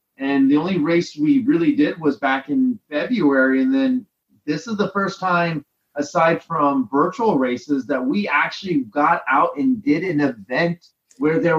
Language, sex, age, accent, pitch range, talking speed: English, male, 30-49, American, 145-205 Hz, 170 wpm